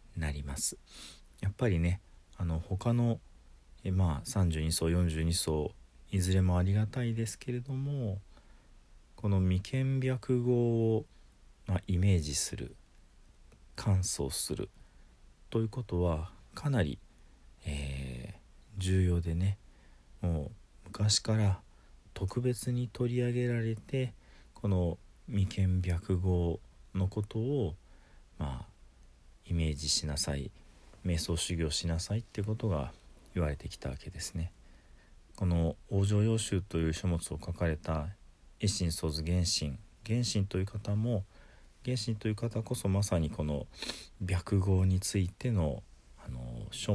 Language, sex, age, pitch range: Japanese, male, 40-59, 80-105 Hz